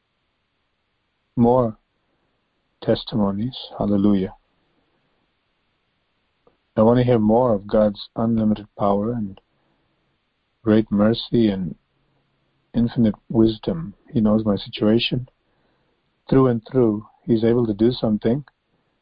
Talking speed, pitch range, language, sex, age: 95 wpm, 100-120 Hz, English, male, 50-69